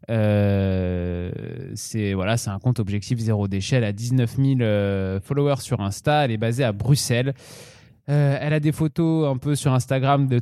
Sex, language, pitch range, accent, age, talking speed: male, French, 105-140 Hz, French, 20-39, 180 wpm